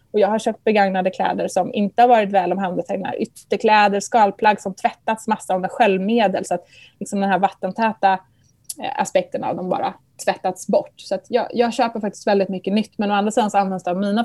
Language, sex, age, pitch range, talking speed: Swedish, female, 20-39, 200-265 Hz, 210 wpm